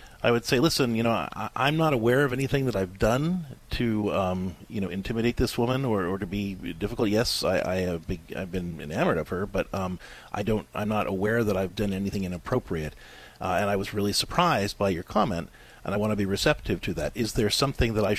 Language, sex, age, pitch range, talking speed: English, male, 40-59, 95-125 Hz, 235 wpm